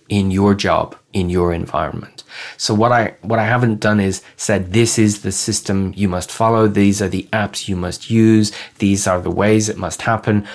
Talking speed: 205 wpm